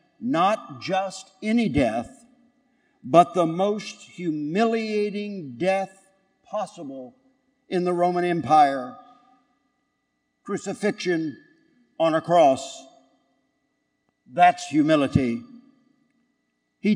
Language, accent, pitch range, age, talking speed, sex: English, American, 175-250 Hz, 60-79, 75 wpm, male